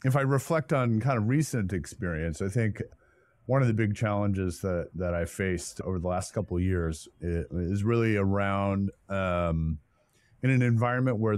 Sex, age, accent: male, 30-49, American